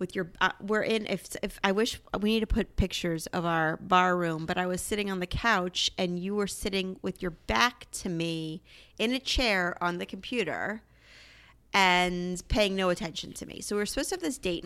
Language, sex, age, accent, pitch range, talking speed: English, female, 30-49, American, 175-220 Hz, 215 wpm